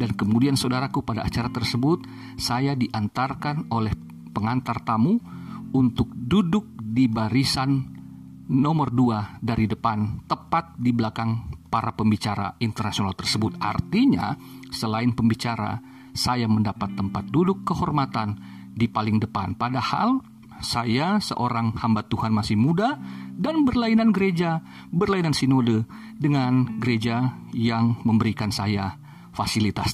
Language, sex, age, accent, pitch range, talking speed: Indonesian, male, 50-69, native, 110-140 Hz, 110 wpm